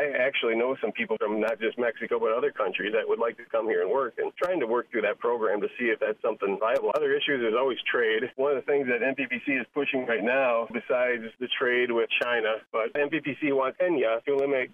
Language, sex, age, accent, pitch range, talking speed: English, male, 40-59, American, 120-165 Hz, 240 wpm